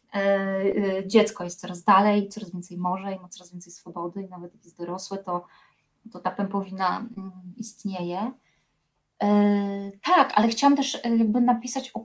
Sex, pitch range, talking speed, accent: female, 180-210 Hz, 140 wpm, native